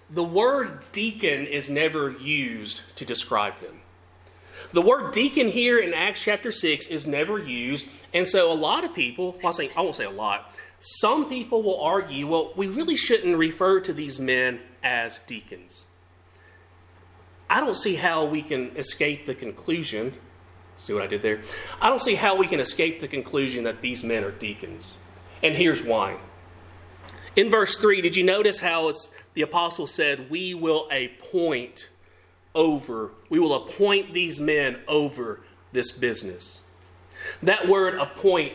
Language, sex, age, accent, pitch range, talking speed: English, male, 30-49, American, 110-175 Hz, 160 wpm